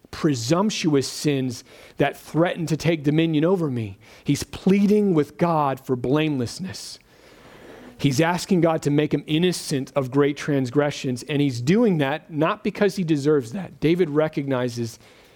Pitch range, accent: 130-160 Hz, American